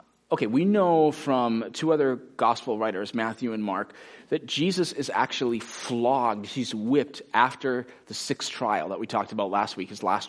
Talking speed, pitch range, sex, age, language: 175 wpm, 125-185 Hz, male, 30-49, English